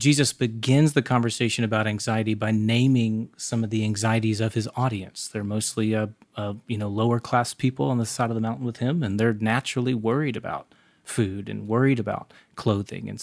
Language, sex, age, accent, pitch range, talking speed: English, male, 30-49, American, 110-125 Hz, 195 wpm